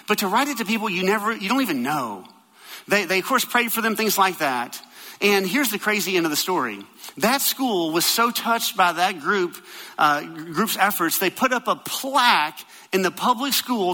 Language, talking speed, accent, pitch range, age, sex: English, 215 wpm, American, 190-265 Hz, 40-59, male